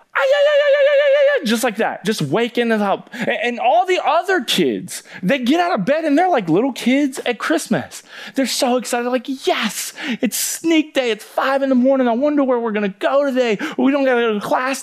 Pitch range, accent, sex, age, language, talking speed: 180-265 Hz, American, male, 30-49, English, 205 wpm